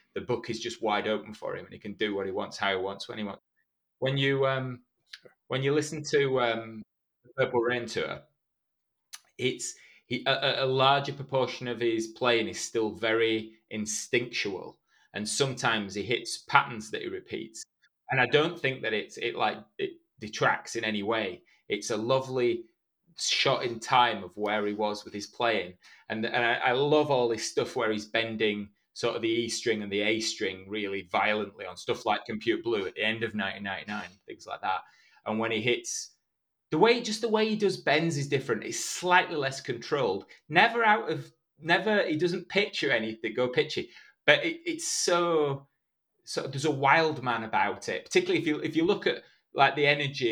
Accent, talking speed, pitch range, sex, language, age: British, 195 wpm, 110-180 Hz, male, English, 20-39